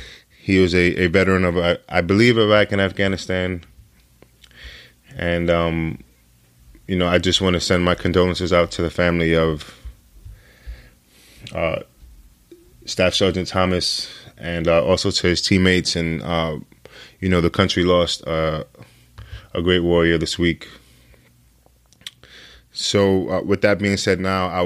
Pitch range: 85-100 Hz